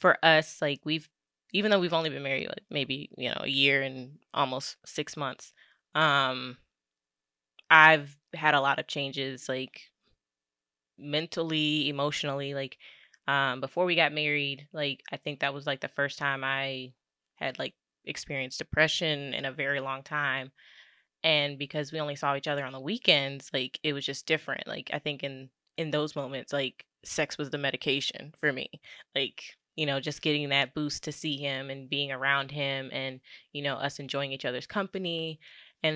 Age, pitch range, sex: 20-39, 135-155 Hz, female